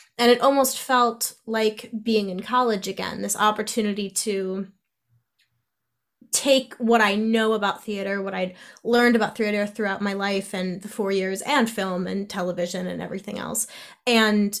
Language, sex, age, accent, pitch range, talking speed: English, female, 20-39, American, 195-240 Hz, 155 wpm